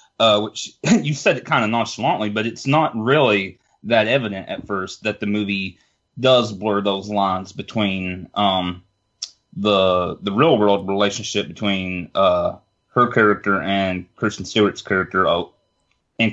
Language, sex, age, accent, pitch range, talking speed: English, male, 30-49, American, 95-115 Hz, 145 wpm